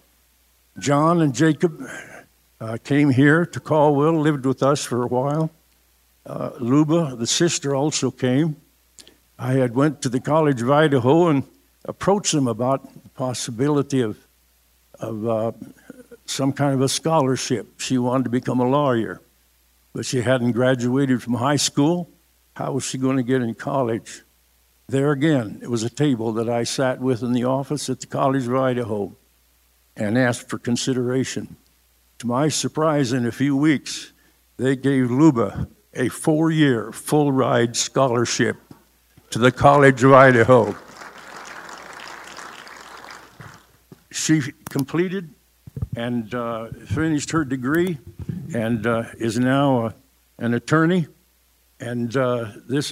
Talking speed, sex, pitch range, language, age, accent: 135 wpm, male, 115-145 Hz, English, 60-79, American